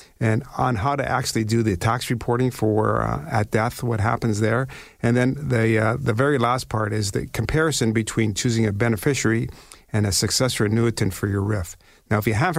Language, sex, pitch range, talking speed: English, male, 110-130 Hz, 200 wpm